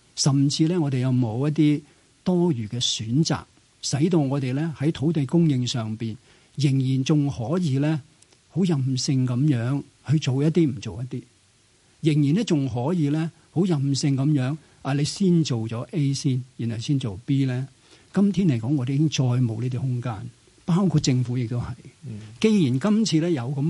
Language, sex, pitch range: Chinese, male, 125-155 Hz